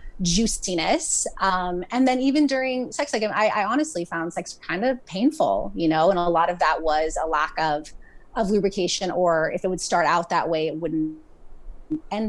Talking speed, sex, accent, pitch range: 200 wpm, female, American, 165-220 Hz